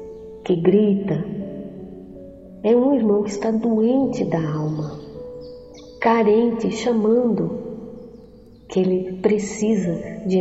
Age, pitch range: 40-59, 180-235 Hz